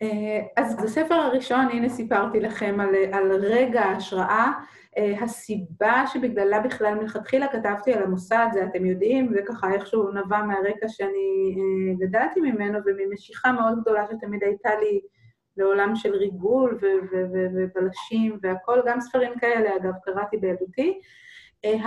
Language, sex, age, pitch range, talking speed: Hebrew, female, 30-49, 205-260 Hz, 140 wpm